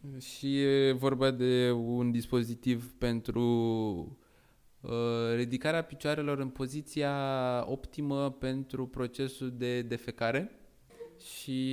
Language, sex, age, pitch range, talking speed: Romanian, male, 20-39, 115-135 Hz, 80 wpm